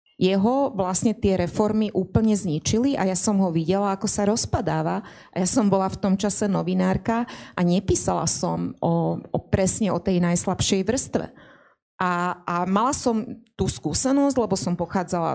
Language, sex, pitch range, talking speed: Slovak, female, 180-220 Hz, 160 wpm